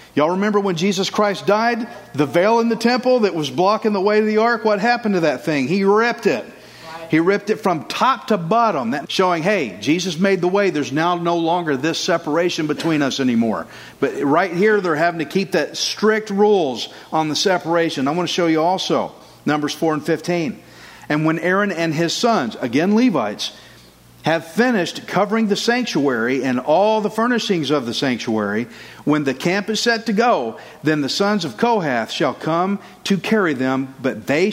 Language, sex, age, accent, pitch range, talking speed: English, male, 50-69, American, 155-210 Hz, 195 wpm